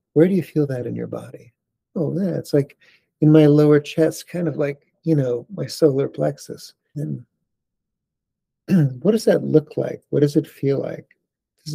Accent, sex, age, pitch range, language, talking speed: American, male, 50-69, 115-155 Hz, English, 185 wpm